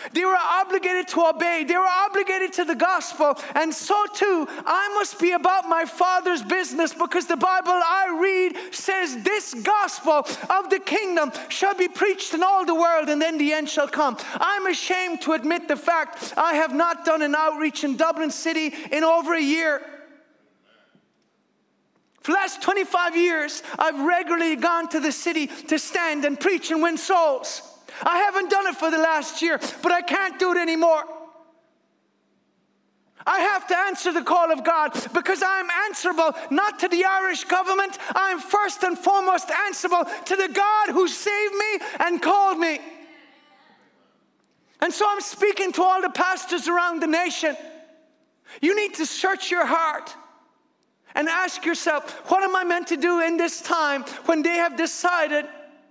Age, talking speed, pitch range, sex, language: 20-39, 170 wpm, 315-375 Hz, male, English